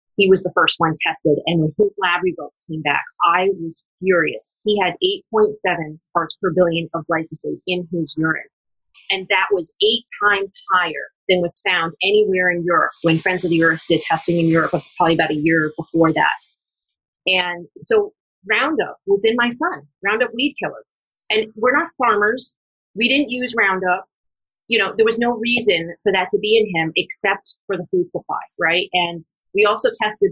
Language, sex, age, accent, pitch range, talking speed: English, female, 30-49, American, 165-210 Hz, 185 wpm